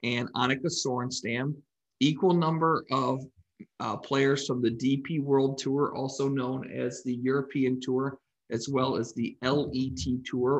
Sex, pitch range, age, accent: male, 125-145 Hz, 40-59, American